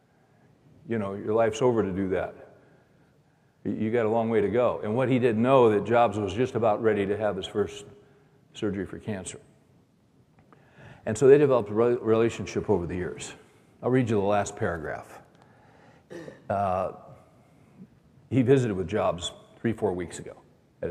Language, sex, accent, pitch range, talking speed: English, male, American, 100-125 Hz, 165 wpm